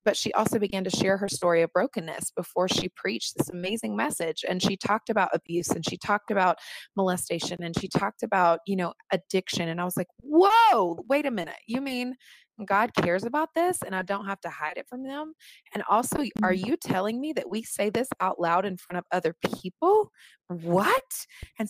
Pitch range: 180-230 Hz